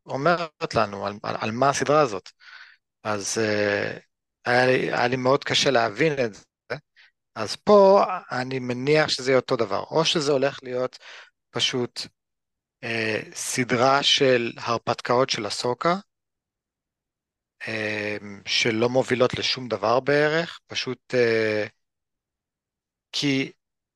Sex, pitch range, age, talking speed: male, 115-150 Hz, 40-59, 115 wpm